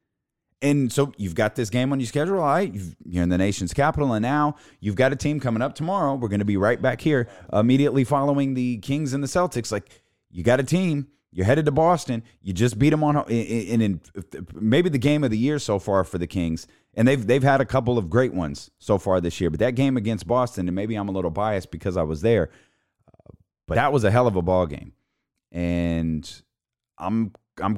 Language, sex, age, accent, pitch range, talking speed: English, male, 30-49, American, 95-130 Hz, 230 wpm